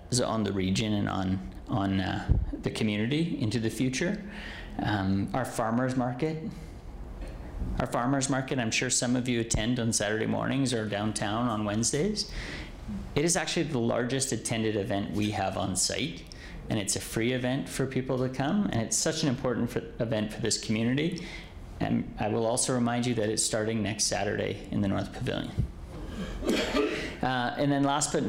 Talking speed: 170 wpm